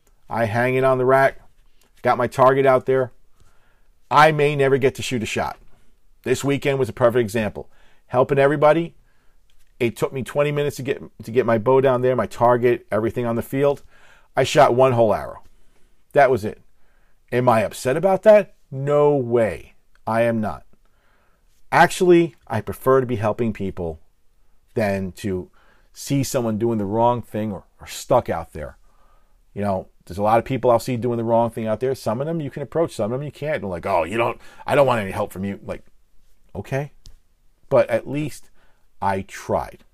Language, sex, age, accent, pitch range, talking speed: English, male, 40-59, American, 100-135 Hz, 190 wpm